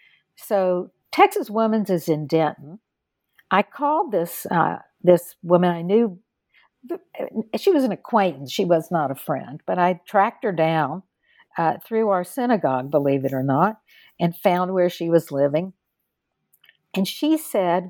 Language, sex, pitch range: English, female, 160-210 Hz